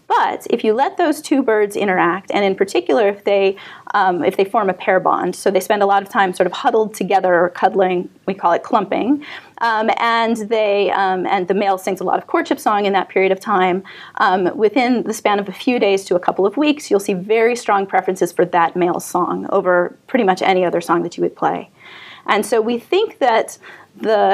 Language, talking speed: English, 230 wpm